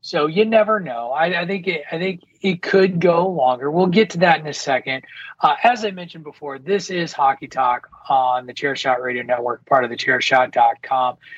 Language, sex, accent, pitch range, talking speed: English, male, American, 135-170 Hz, 205 wpm